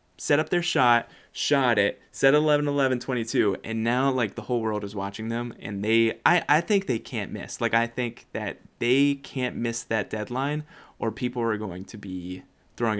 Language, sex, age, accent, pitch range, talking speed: English, male, 20-39, American, 110-135 Hz, 200 wpm